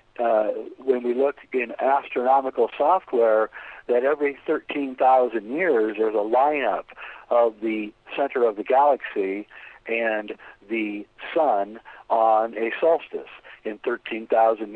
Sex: male